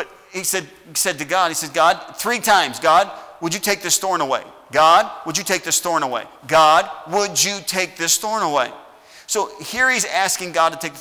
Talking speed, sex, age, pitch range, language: 215 wpm, male, 40-59, 155-205 Hz, English